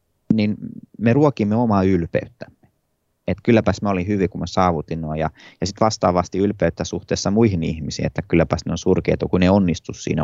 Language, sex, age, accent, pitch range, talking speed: Finnish, male, 30-49, native, 85-105 Hz, 180 wpm